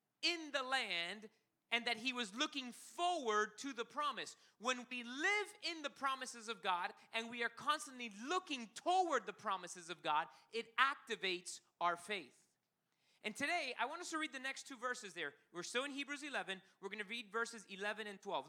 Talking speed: 190 wpm